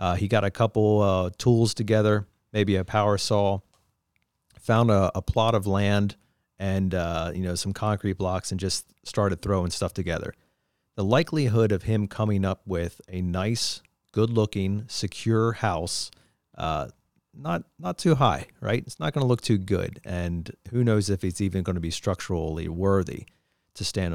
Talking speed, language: 175 wpm, English